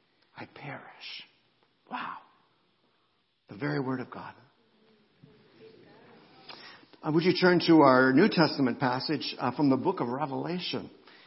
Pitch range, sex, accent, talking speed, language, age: 125-160 Hz, male, American, 120 wpm, English, 50-69